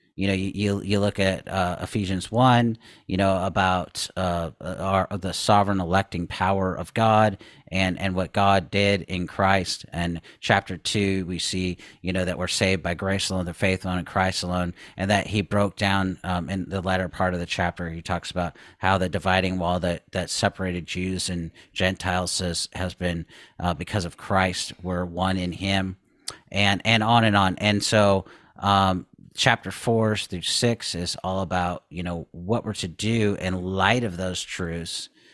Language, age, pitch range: English, 40-59, 90-105 Hz